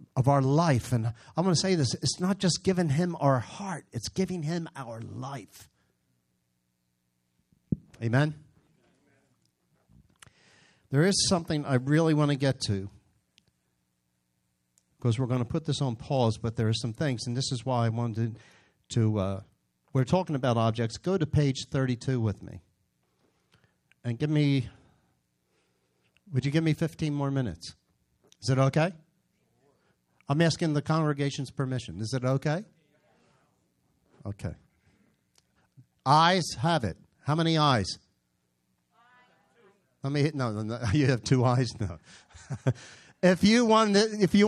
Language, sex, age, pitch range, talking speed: English, male, 50-69, 105-160 Hz, 145 wpm